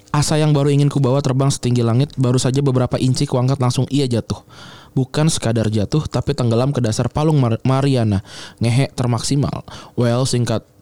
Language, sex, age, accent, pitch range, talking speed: Indonesian, male, 20-39, native, 120-145 Hz, 170 wpm